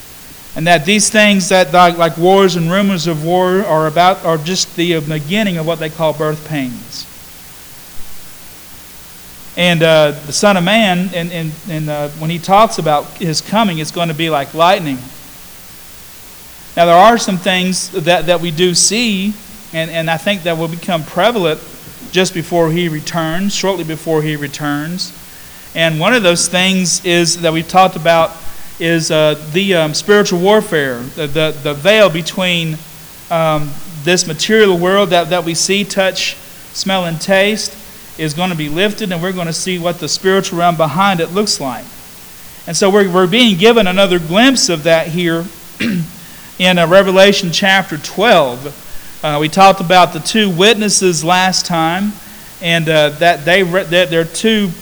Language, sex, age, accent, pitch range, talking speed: English, male, 40-59, American, 160-190 Hz, 170 wpm